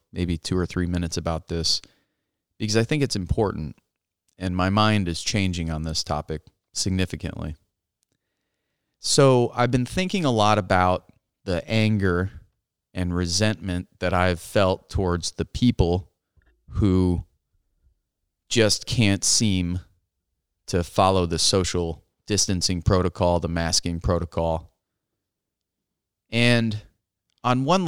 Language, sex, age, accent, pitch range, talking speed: English, male, 30-49, American, 85-110 Hz, 115 wpm